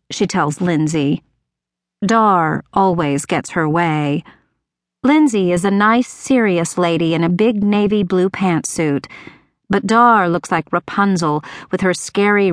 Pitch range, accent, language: 165-210 Hz, American, English